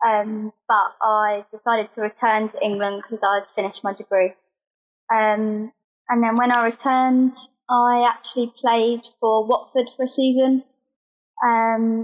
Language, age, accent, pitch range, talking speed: English, 20-39, British, 225-255 Hz, 145 wpm